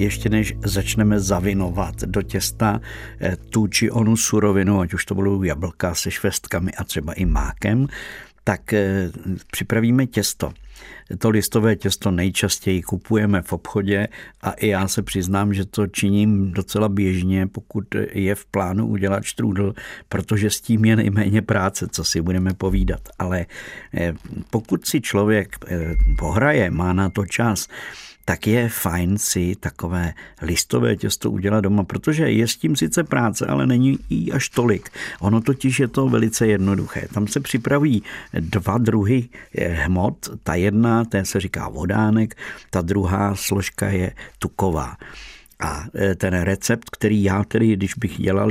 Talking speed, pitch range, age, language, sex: 145 wpm, 95-110 Hz, 50-69, Czech, male